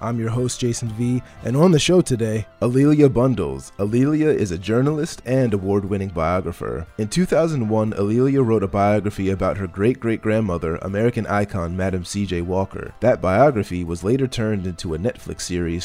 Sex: male